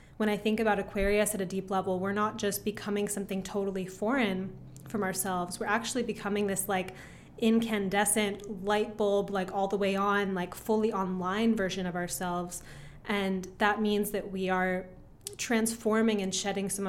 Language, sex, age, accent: English, female, 20-39, American